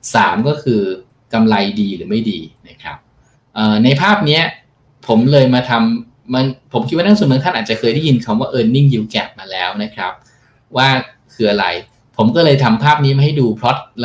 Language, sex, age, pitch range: Thai, male, 20-39, 110-145 Hz